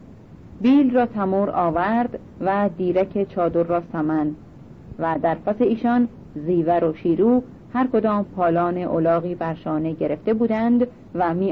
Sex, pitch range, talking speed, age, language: female, 175-245 Hz, 130 wpm, 40-59, Persian